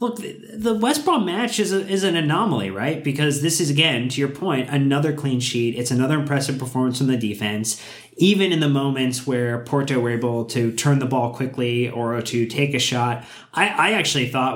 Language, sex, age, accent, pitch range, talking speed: English, male, 20-39, American, 120-150 Hz, 205 wpm